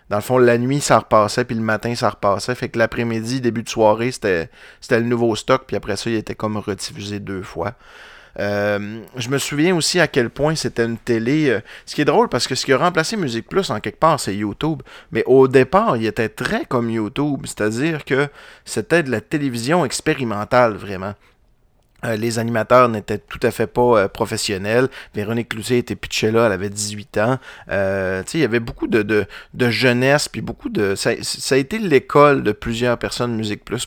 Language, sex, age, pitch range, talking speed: French, male, 30-49, 105-130 Hz, 205 wpm